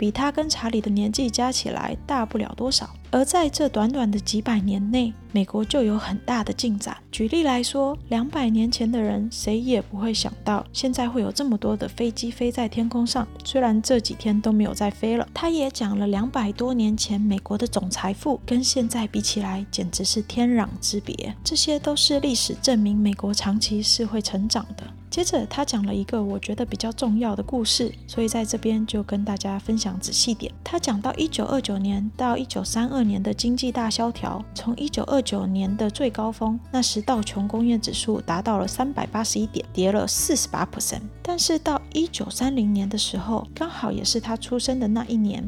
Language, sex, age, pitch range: Chinese, female, 20-39, 210-255 Hz